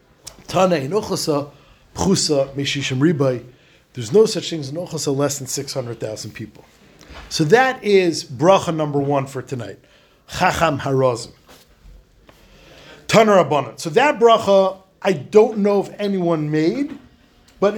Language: English